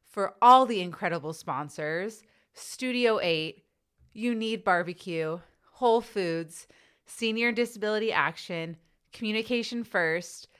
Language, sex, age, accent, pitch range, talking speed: English, female, 20-39, American, 170-215 Hz, 95 wpm